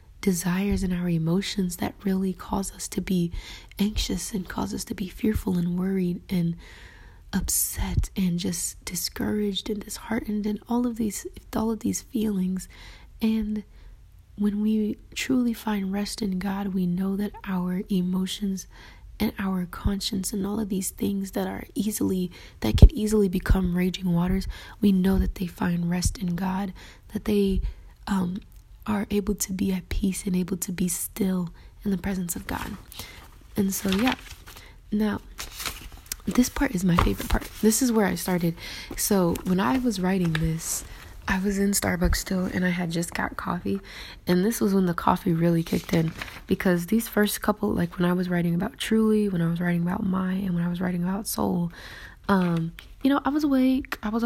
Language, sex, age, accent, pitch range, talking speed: English, female, 20-39, American, 175-210 Hz, 180 wpm